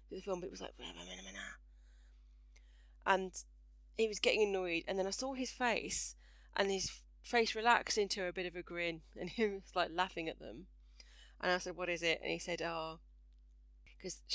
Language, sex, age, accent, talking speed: English, female, 30-49, British, 185 wpm